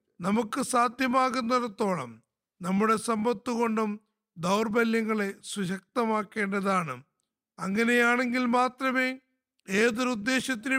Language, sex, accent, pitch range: Malayalam, male, native, 205-255 Hz